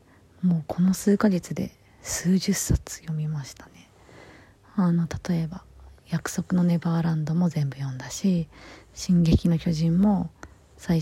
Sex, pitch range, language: female, 115-185 Hz, Japanese